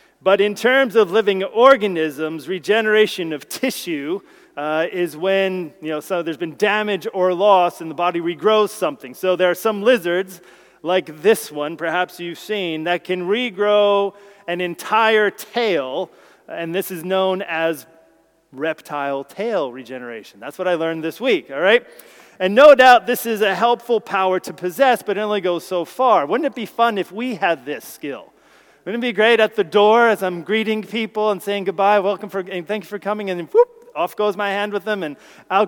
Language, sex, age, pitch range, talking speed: English, male, 30-49, 175-220 Hz, 190 wpm